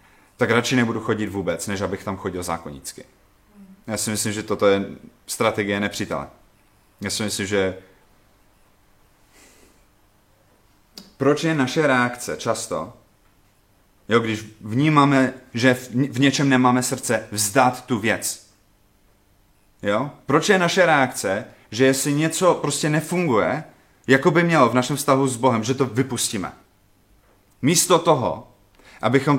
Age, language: 30-49, Czech